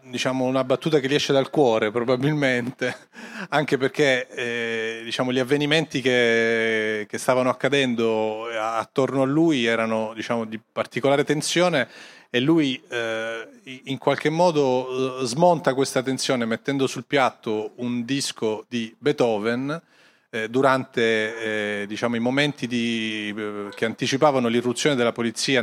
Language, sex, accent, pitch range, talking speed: Italian, male, native, 115-140 Hz, 120 wpm